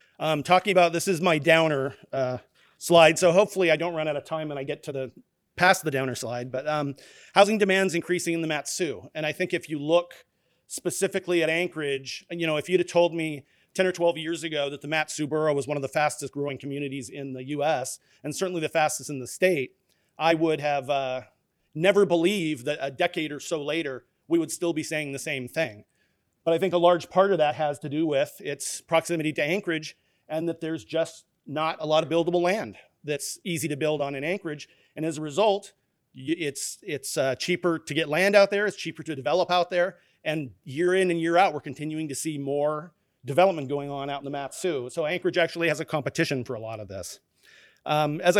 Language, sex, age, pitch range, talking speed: English, male, 40-59, 145-175 Hz, 225 wpm